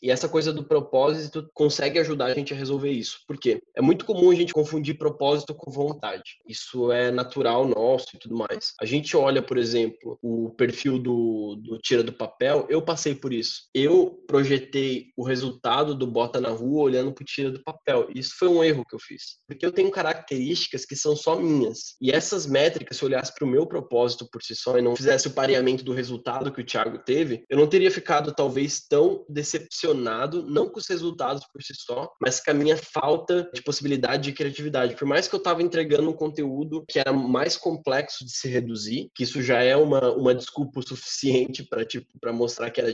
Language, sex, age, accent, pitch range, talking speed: Portuguese, male, 20-39, Brazilian, 130-165 Hz, 200 wpm